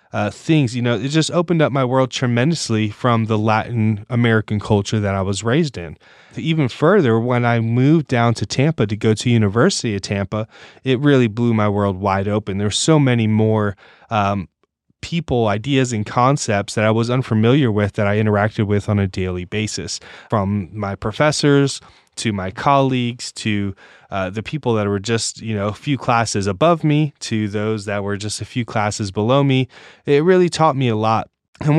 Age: 20-39